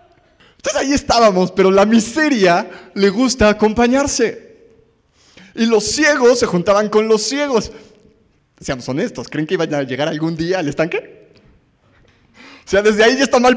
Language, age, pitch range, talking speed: Spanish, 30-49, 160-245 Hz, 150 wpm